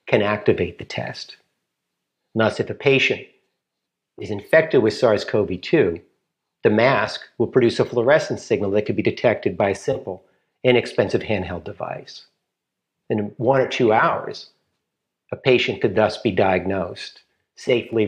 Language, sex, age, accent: Korean, male, 50-69, American